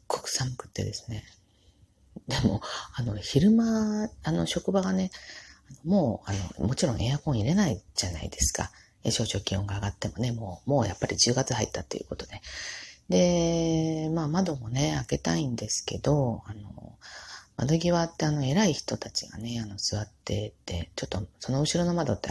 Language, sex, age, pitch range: Japanese, female, 40-59, 105-165 Hz